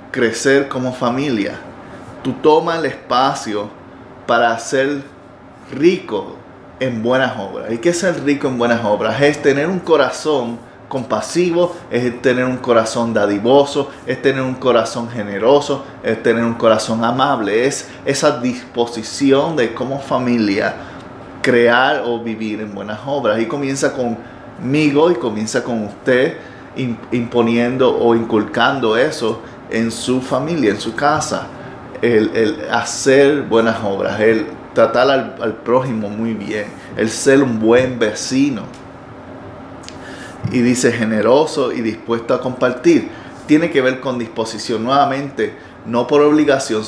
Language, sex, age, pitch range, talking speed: Spanish, male, 30-49, 115-140 Hz, 130 wpm